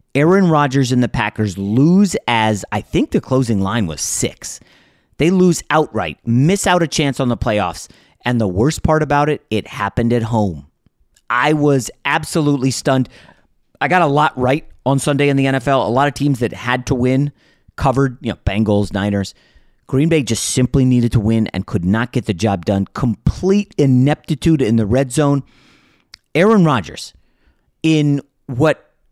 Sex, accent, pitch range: male, American, 110-145 Hz